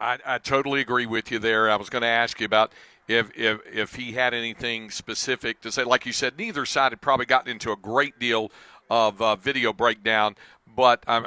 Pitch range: 120-150 Hz